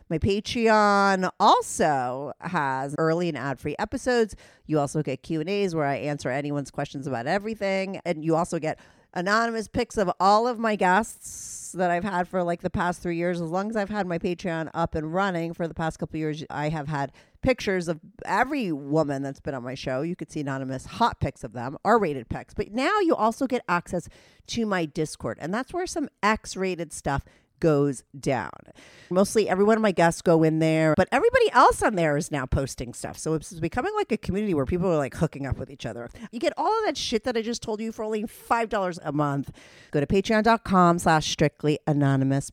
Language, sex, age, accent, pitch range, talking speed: English, female, 40-59, American, 145-200 Hz, 210 wpm